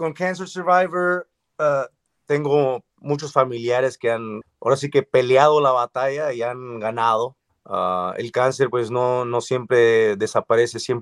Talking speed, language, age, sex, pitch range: 140 wpm, Spanish, 30-49, male, 110-145 Hz